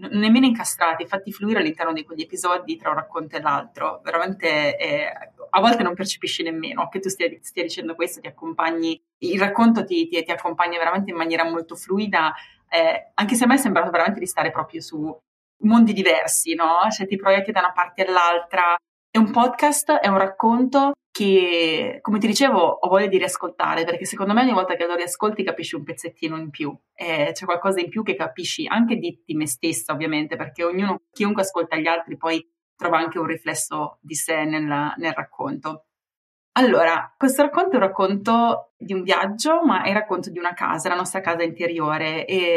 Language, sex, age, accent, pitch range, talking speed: Italian, female, 20-39, native, 165-220 Hz, 195 wpm